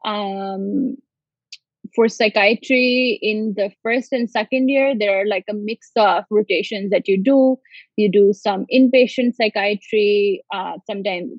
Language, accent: English, Indian